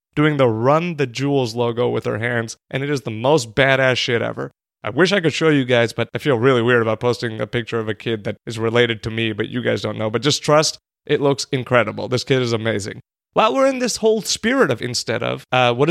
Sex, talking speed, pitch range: male, 255 wpm, 115-145 Hz